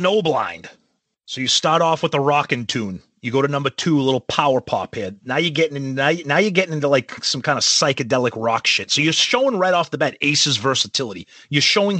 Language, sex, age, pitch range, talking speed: English, male, 30-49, 135-190 Hz, 235 wpm